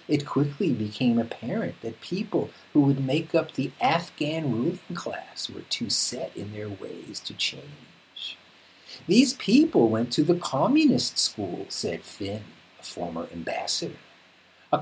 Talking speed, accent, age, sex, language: 140 wpm, American, 50-69, male, English